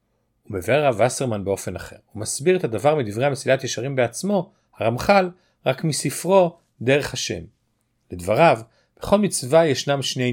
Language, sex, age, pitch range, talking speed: Hebrew, male, 40-59, 115-165 Hz, 130 wpm